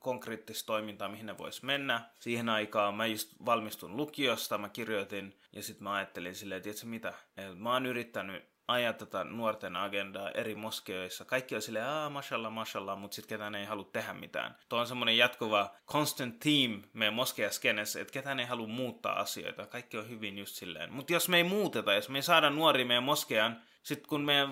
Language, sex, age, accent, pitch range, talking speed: Finnish, male, 20-39, native, 110-135 Hz, 185 wpm